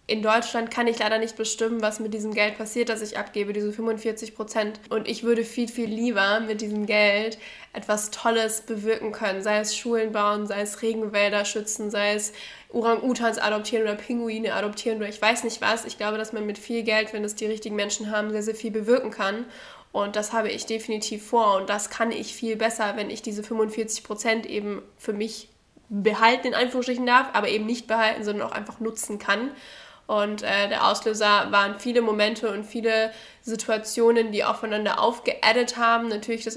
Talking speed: 195 wpm